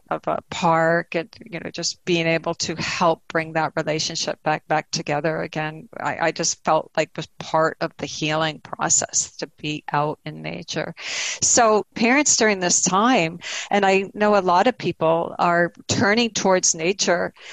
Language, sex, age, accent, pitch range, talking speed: English, female, 50-69, American, 165-200 Hz, 170 wpm